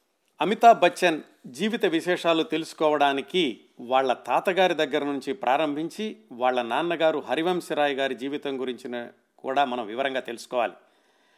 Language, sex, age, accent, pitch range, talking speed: Telugu, male, 50-69, native, 135-180 Hz, 105 wpm